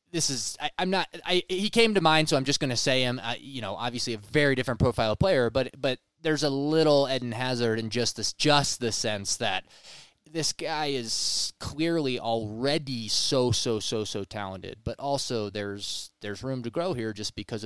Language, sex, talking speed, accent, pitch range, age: English, male, 200 wpm, American, 105-130 Hz, 20-39